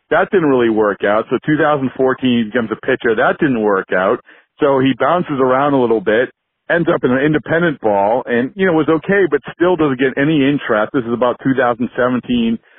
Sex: male